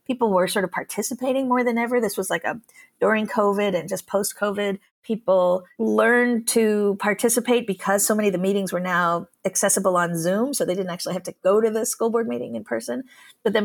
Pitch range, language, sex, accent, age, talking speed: 180-220 Hz, English, female, American, 40-59, 210 wpm